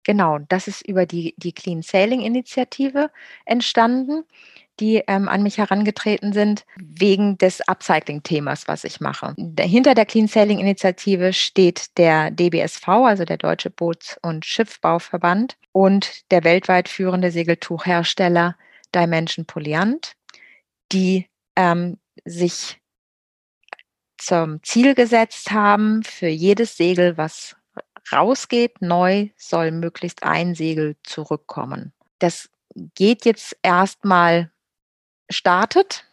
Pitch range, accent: 170-215 Hz, German